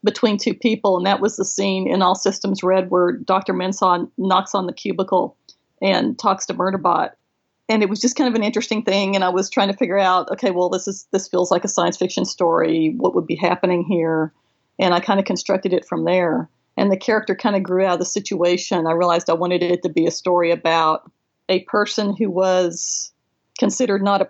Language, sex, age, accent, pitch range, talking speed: English, female, 40-59, American, 175-200 Hz, 220 wpm